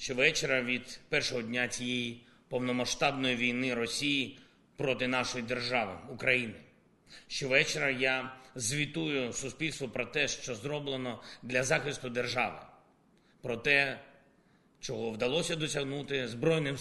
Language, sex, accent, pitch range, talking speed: Ukrainian, male, native, 125-155 Hz, 105 wpm